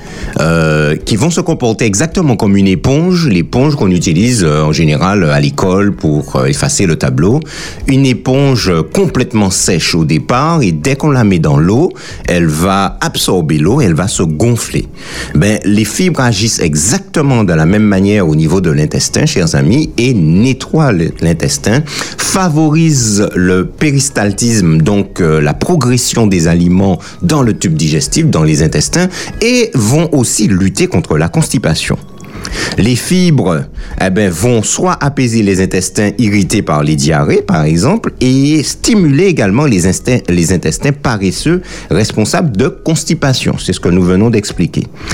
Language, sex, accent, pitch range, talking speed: French, male, French, 95-155 Hz, 155 wpm